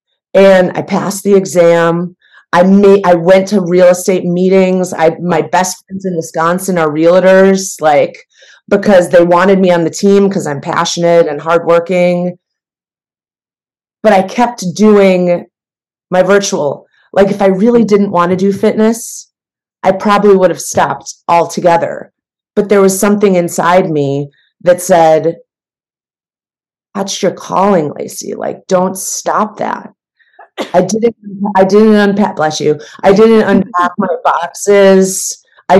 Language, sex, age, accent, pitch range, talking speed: English, female, 30-49, American, 170-200 Hz, 140 wpm